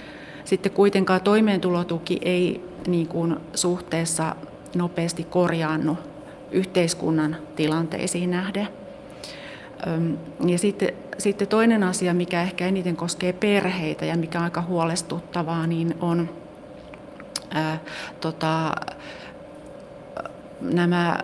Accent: native